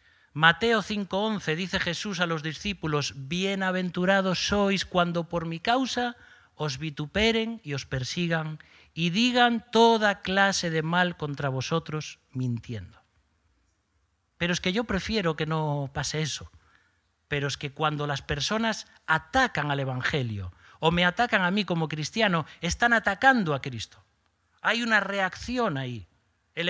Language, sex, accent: Spanish, male, Spanish